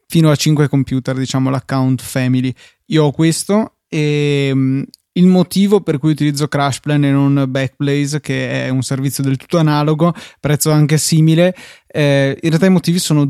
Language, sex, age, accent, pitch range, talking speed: Italian, male, 20-39, native, 140-160 Hz, 160 wpm